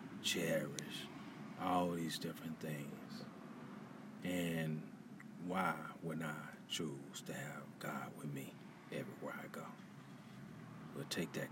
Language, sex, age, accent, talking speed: English, male, 40-59, American, 110 wpm